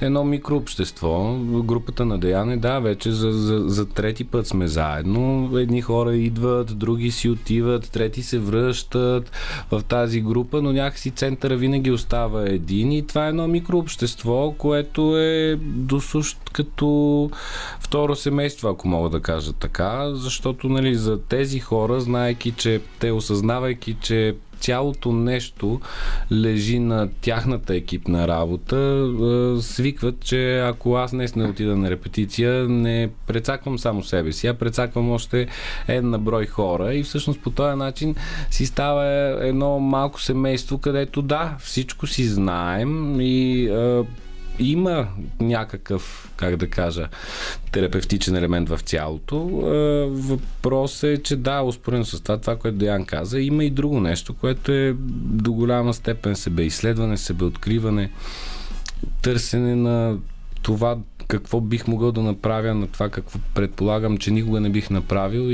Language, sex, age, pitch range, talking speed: Bulgarian, male, 30-49, 105-130 Hz, 135 wpm